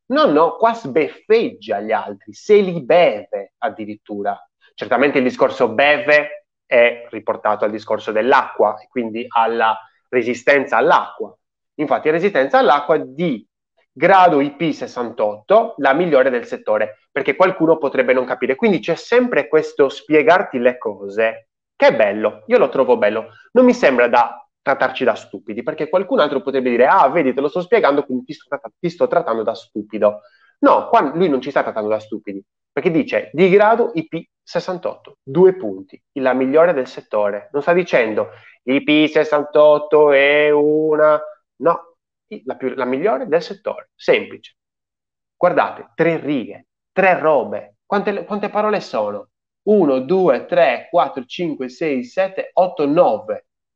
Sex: male